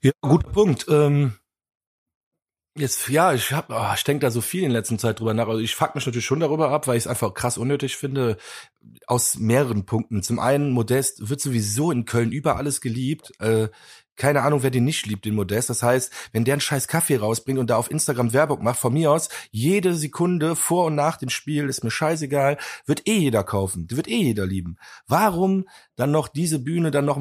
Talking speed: 215 wpm